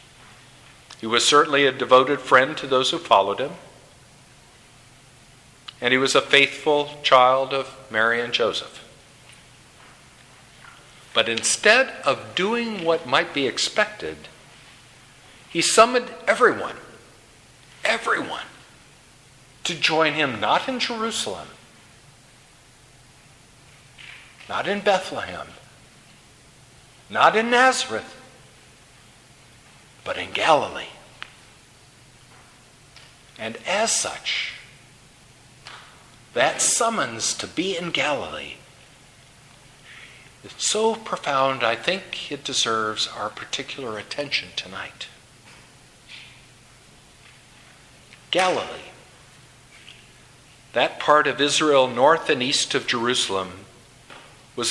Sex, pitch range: male, 125-145 Hz